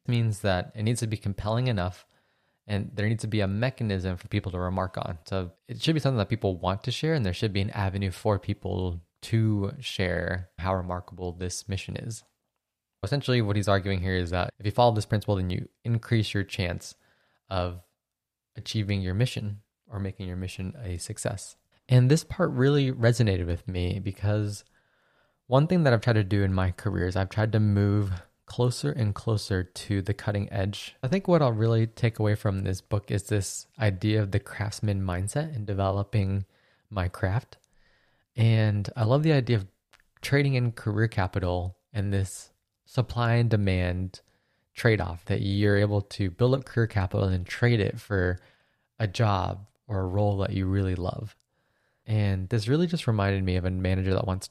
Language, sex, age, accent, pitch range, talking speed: English, male, 20-39, American, 95-115 Hz, 190 wpm